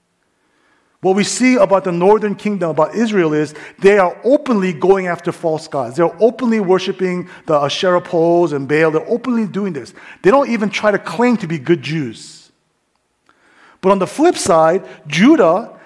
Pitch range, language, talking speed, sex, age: 170-235 Hz, English, 170 wpm, male, 40-59